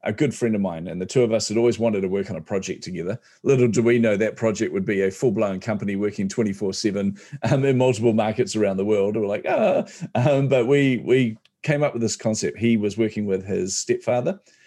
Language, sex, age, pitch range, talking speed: English, male, 40-59, 100-120 Hz, 230 wpm